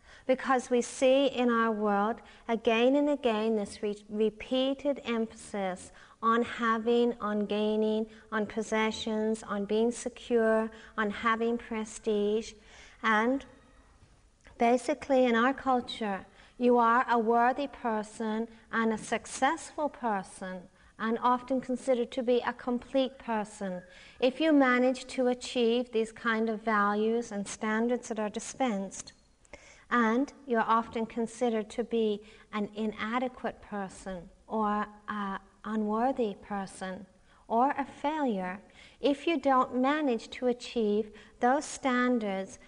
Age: 40-59